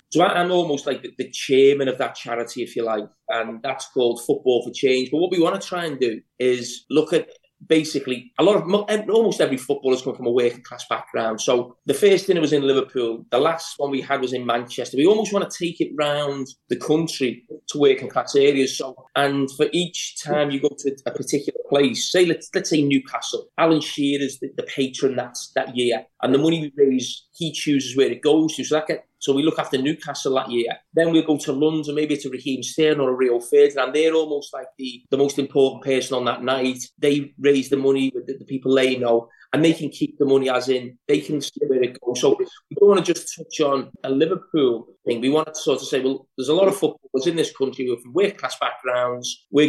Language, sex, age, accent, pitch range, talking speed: English, male, 20-39, British, 125-155 Hz, 235 wpm